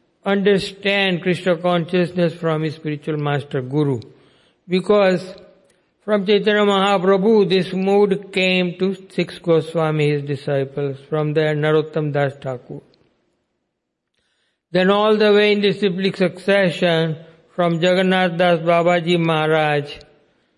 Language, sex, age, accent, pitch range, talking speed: English, male, 60-79, Indian, 155-190 Hz, 110 wpm